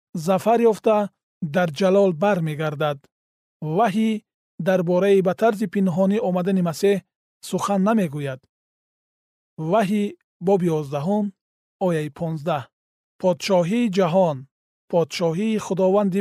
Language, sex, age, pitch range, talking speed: Persian, male, 40-59, 160-210 Hz, 85 wpm